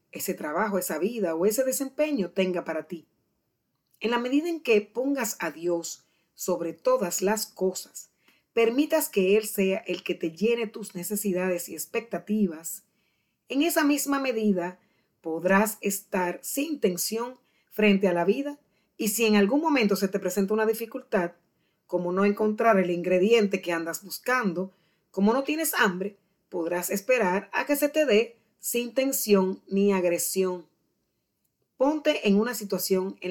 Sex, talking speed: female, 150 wpm